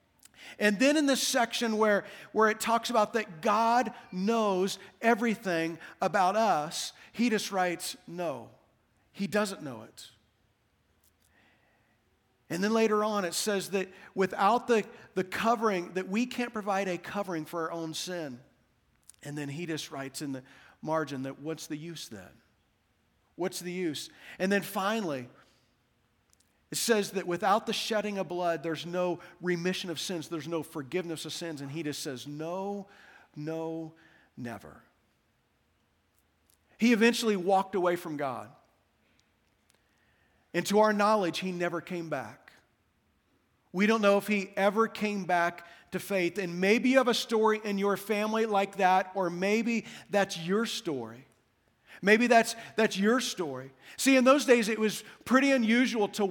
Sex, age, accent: male, 50-69, American